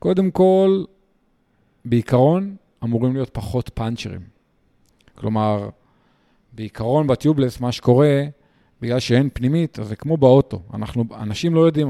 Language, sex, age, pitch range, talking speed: Hebrew, male, 40-59, 115-150 Hz, 115 wpm